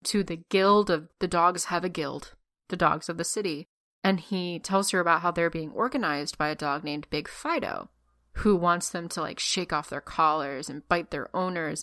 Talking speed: 215 wpm